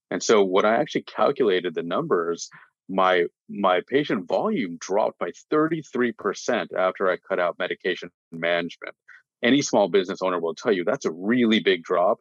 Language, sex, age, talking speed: English, male, 40-59, 160 wpm